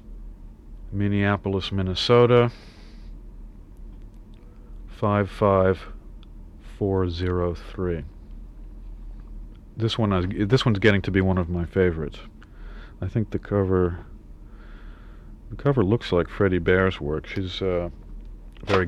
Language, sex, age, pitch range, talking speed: English, male, 40-59, 90-110 Hz, 95 wpm